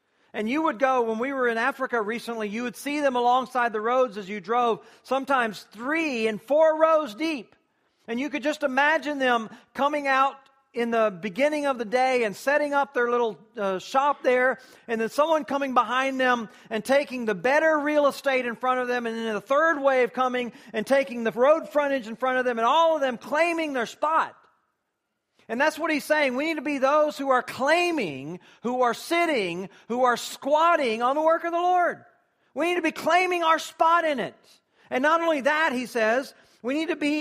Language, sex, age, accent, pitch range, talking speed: English, male, 40-59, American, 220-290 Hz, 210 wpm